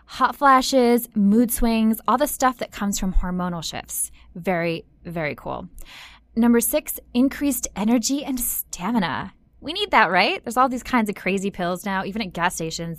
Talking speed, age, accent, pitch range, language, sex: 170 wpm, 10-29, American, 175-235 Hz, English, female